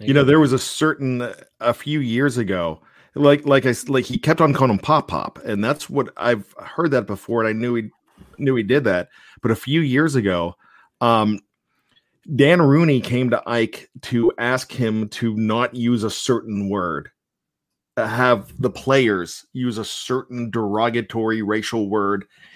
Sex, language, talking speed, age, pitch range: male, English, 175 wpm, 40-59, 105-130 Hz